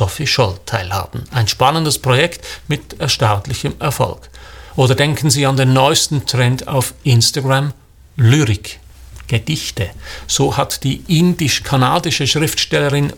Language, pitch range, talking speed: German, 115-145 Hz, 120 wpm